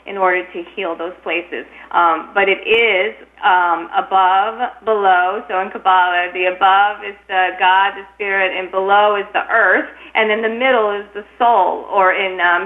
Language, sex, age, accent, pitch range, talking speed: English, female, 40-59, American, 180-210 Hz, 180 wpm